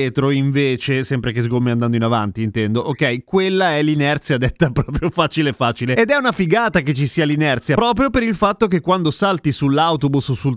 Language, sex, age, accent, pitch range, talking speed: Italian, male, 30-49, native, 130-175 Hz, 195 wpm